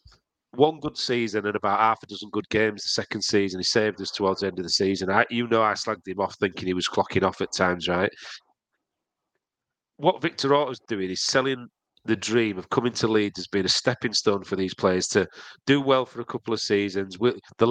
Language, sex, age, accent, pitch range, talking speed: English, male, 40-59, British, 100-125 Hz, 225 wpm